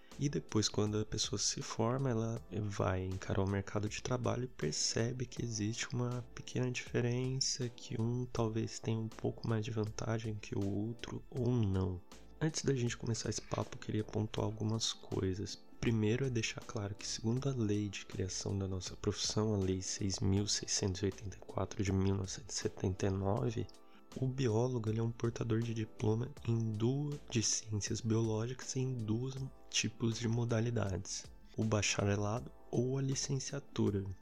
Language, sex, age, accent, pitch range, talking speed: Portuguese, male, 20-39, Brazilian, 105-125 Hz, 150 wpm